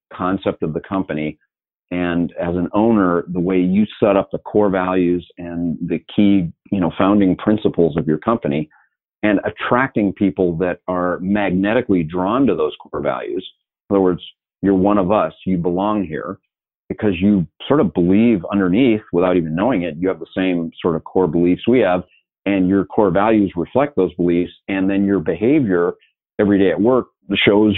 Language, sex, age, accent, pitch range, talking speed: English, male, 40-59, American, 90-105 Hz, 180 wpm